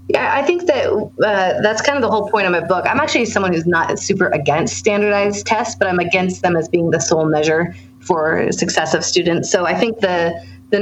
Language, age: English, 30-49